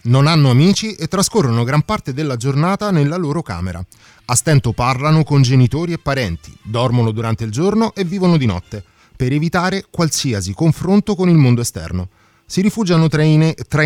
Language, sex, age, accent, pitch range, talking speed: Italian, male, 30-49, native, 120-170 Hz, 165 wpm